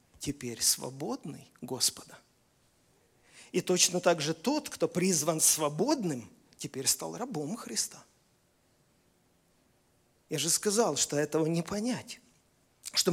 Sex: male